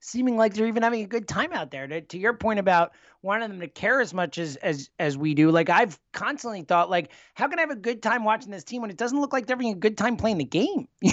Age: 30-49